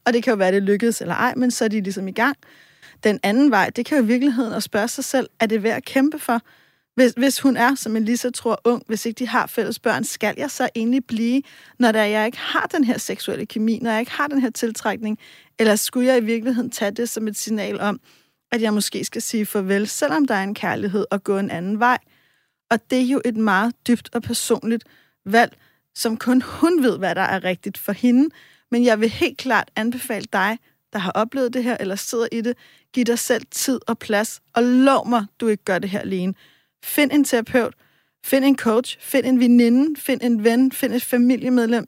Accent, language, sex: native, Danish, female